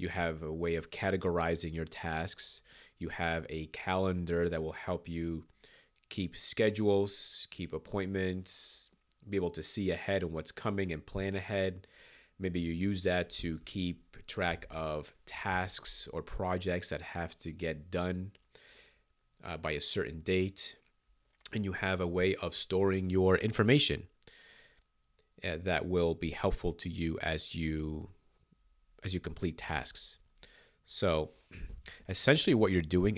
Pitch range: 80-95 Hz